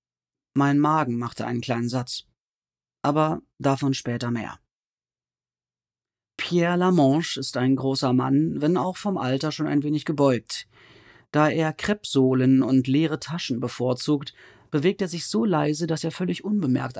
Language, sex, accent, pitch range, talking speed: German, male, German, 115-155 Hz, 140 wpm